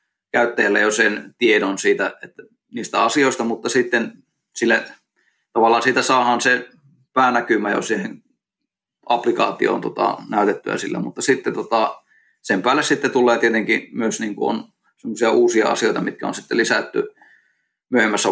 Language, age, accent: Finnish, 20-39, native